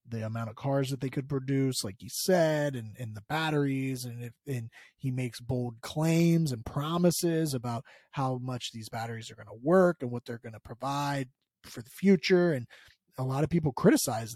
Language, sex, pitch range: English, male, 120-150 Hz